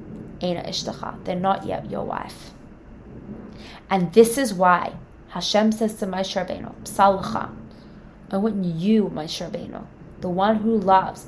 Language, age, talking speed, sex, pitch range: English, 20-39, 120 wpm, female, 180-220 Hz